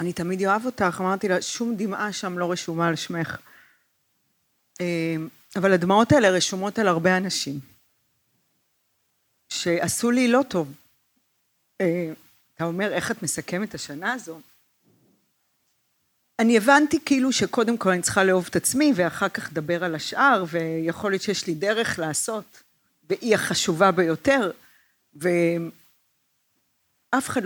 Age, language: 40-59, Hebrew